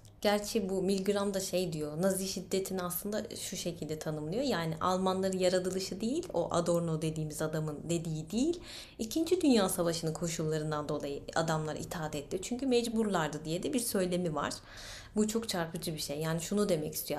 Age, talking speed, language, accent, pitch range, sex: 30-49, 160 wpm, Turkish, native, 155-200 Hz, female